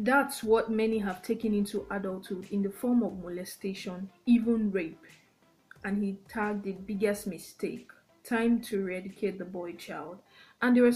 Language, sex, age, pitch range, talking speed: English, female, 20-39, 195-240 Hz, 160 wpm